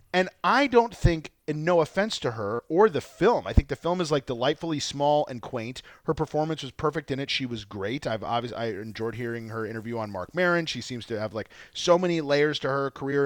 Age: 30-49